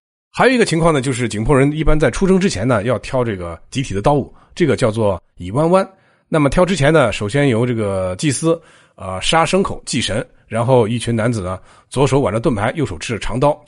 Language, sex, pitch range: Chinese, male, 105-155 Hz